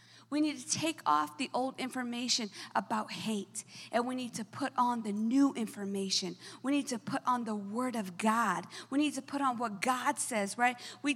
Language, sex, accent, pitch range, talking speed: English, female, American, 245-350 Hz, 205 wpm